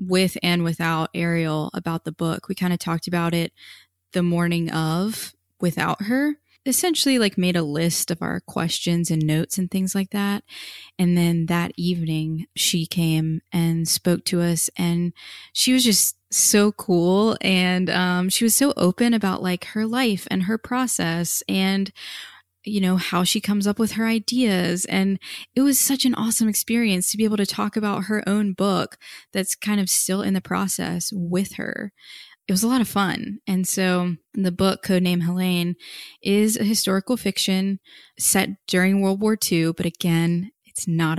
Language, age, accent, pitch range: English, 20-39, American, 170-205 Hz